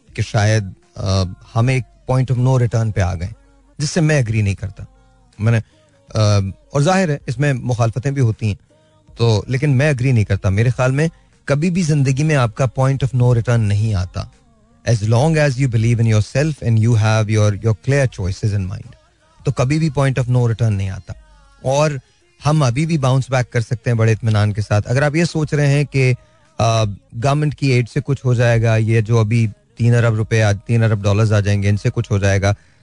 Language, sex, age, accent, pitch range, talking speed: Hindi, male, 30-49, native, 105-130 Hz, 175 wpm